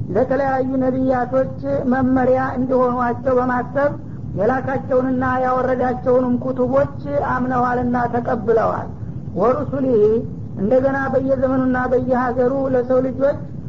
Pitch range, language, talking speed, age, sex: 245-260 Hz, Amharic, 65 wpm, 50-69, female